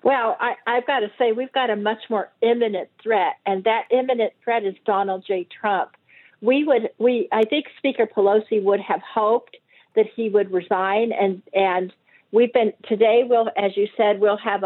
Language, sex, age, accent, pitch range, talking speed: English, female, 50-69, American, 205-245 Hz, 185 wpm